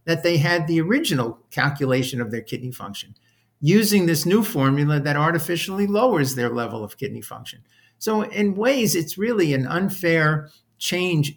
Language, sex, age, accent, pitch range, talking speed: English, male, 50-69, American, 130-160 Hz, 160 wpm